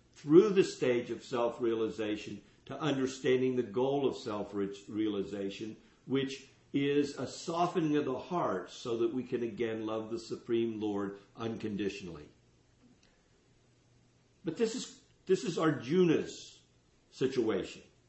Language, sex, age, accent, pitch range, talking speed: English, male, 60-79, American, 110-150 Hz, 115 wpm